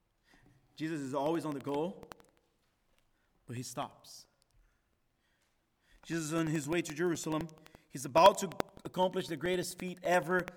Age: 40-59